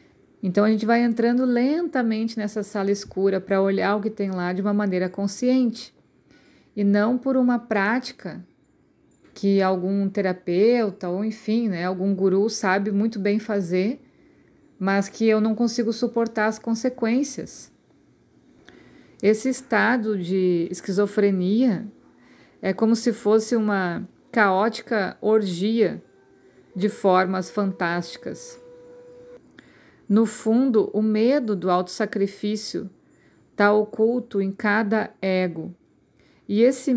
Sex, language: female, Portuguese